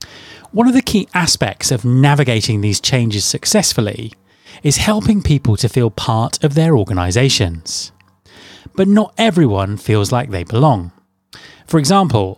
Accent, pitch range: British, 100-160 Hz